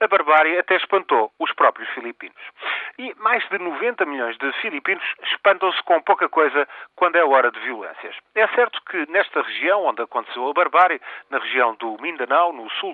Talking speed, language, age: 175 wpm, Portuguese, 40-59